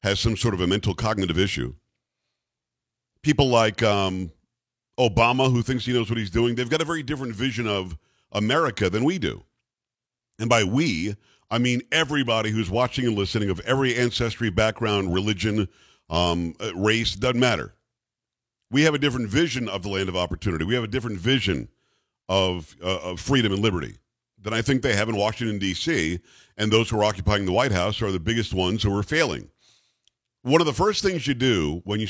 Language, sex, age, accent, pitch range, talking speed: English, male, 50-69, American, 100-125 Hz, 190 wpm